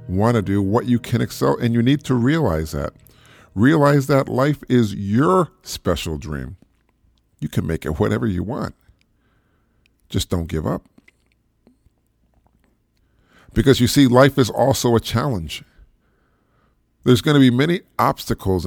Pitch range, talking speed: 90-130 Hz, 145 wpm